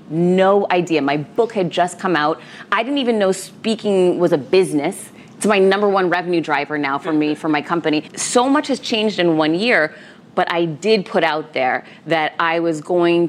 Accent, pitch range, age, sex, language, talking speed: American, 160-205 Hz, 30-49, female, English, 205 wpm